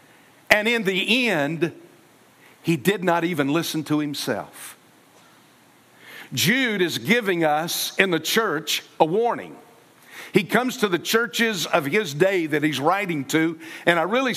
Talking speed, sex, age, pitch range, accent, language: 145 wpm, male, 50-69, 160-205 Hz, American, English